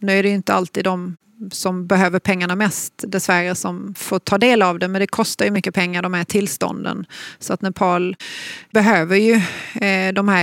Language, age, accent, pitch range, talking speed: Swedish, 30-49, native, 180-200 Hz, 190 wpm